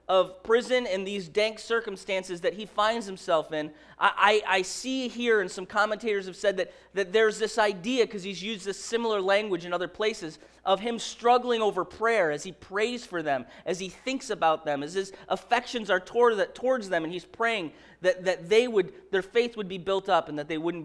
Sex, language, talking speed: male, English, 215 wpm